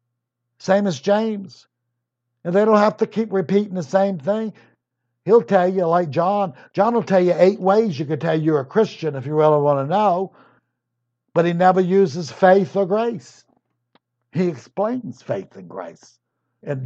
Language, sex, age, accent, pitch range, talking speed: English, male, 60-79, American, 130-195 Hz, 175 wpm